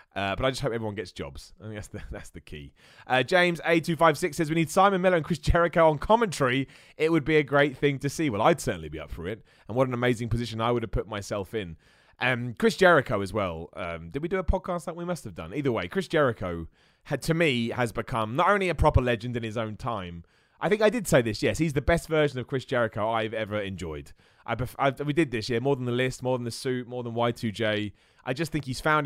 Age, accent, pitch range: 30-49, British, 115-155 Hz